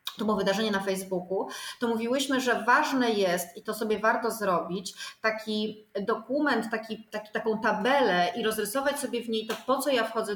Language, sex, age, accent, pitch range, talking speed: Polish, female, 30-49, native, 205-245 Hz, 180 wpm